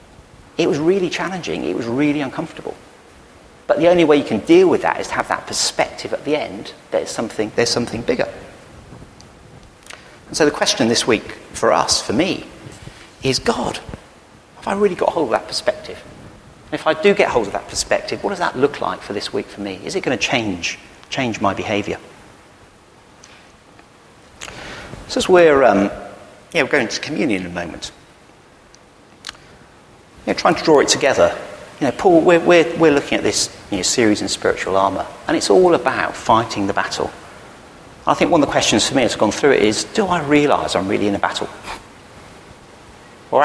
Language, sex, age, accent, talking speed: English, male, 40-59, British, 200 wpm